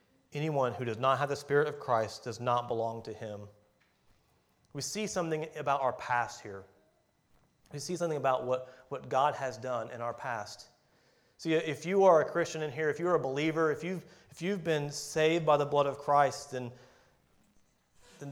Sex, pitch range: male, 130-170 Hz